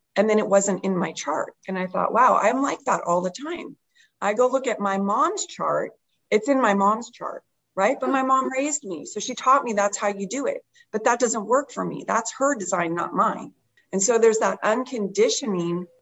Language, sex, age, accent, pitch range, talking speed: English, female, 40-59, American, 175-220 Hz, 225 wpm